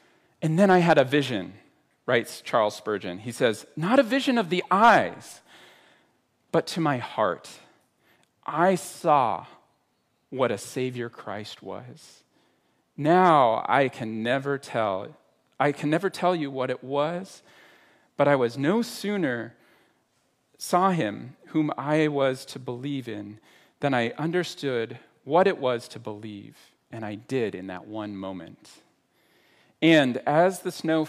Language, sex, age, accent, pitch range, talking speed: English, male, 40-59, American, 110-160 Hz, 140 wpm